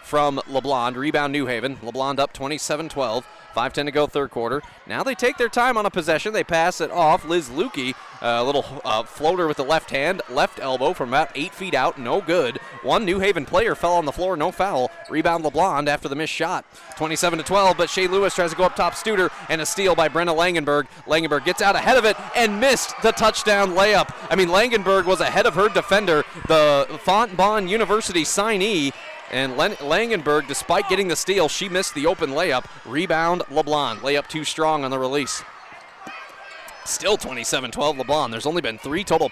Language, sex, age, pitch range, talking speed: English, male, 30-49, 145-195 Hz, 190 wpm